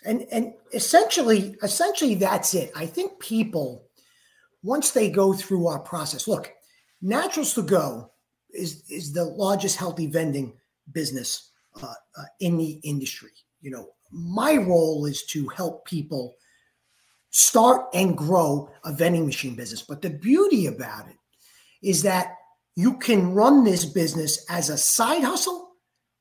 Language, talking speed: English, 140 wpm